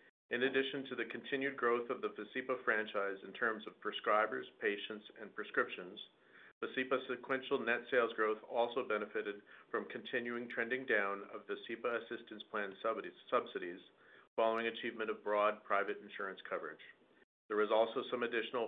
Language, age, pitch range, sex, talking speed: English, 50-69, 105-125 Hz, male, 150 wpm